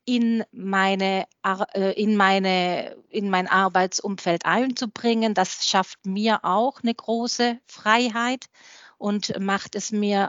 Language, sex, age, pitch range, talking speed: German, female, 40-59, 180-225 Hz, 110 wpm